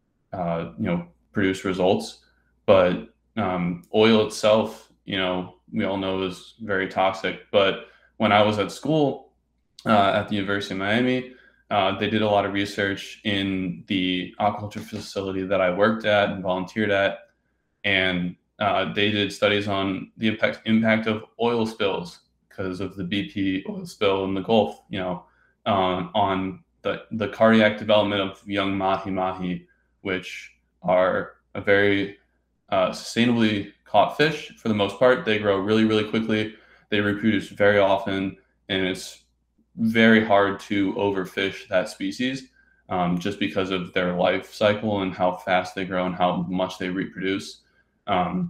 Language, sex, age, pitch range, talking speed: English, male, 20-39, 95-110 Hz, 155 wpm